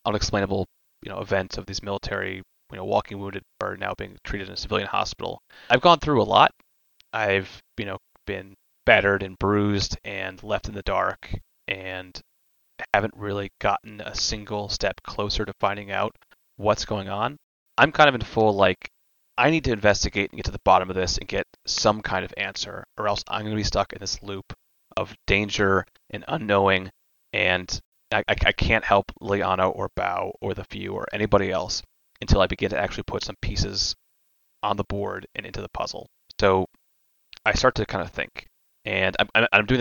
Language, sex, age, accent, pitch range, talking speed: English, male, 30-49, American, 95-110 Hz, 190 wpm